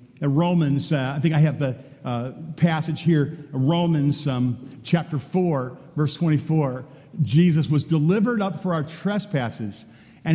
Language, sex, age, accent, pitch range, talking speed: English, male, 50-69, American, 150-190 Hz, 140 wpm